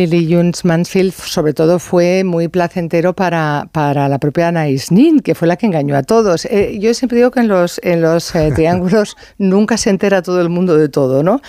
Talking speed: 215 wpm